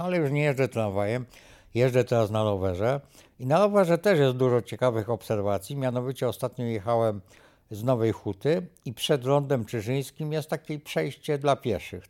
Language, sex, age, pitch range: Polish, male, 60-79, 110-145 Hz